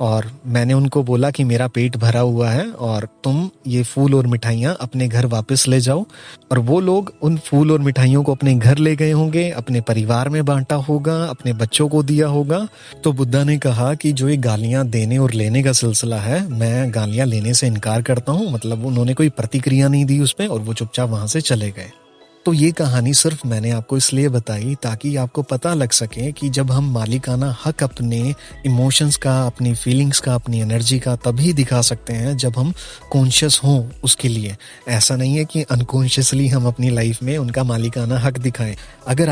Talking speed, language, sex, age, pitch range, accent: 200 wpm, Hindi, male, 30-49, 120-140 Hz, native